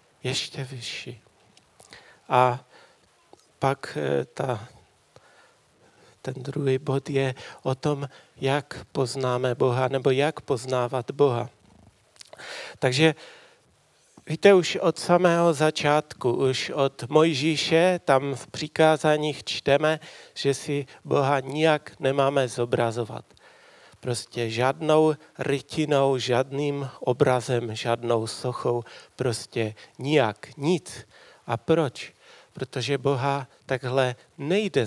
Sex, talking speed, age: male, 90 wpm, 40-59